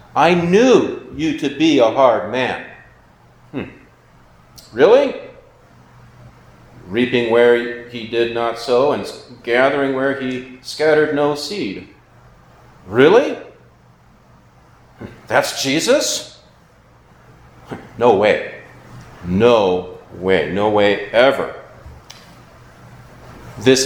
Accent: American